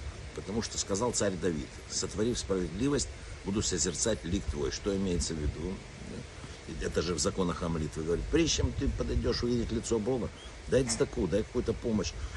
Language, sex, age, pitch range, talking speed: Russian, male, 60-79, 85-110 Hz, 155 wpm